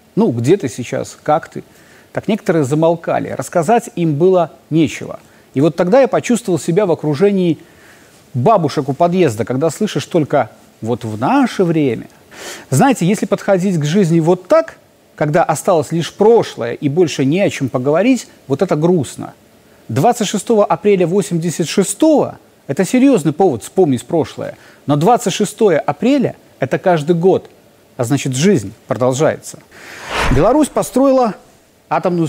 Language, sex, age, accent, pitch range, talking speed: Russian, male, 30-49, native, 145-205 Hz, 135 wpm